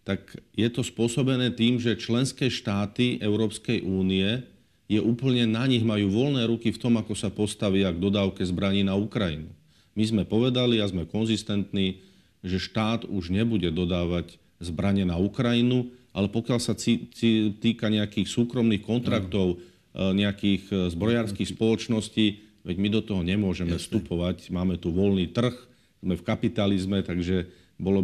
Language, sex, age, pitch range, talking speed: Slovak, male, 50-69, 95-115 Hz, 145 wpm